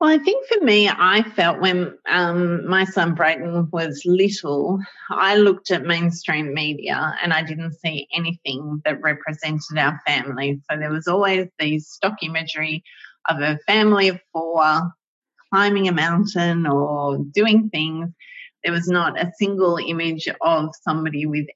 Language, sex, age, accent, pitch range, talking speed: English, female, 30-49, Australian, 155-185 Hz, 155 wpm